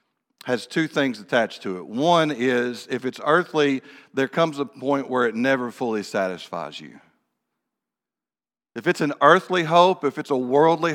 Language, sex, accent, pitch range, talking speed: English, male, American, 130-155 Hz, 165 wpm